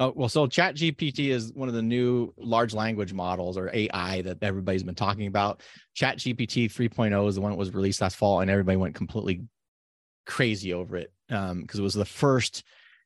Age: 30-49